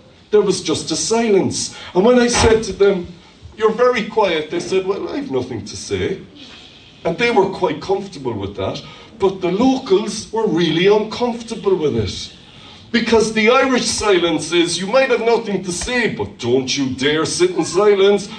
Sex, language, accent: male, English, Irish